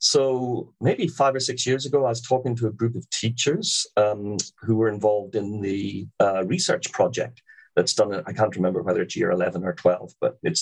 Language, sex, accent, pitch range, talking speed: English, male, British, 100-130 Hz, 215 wpm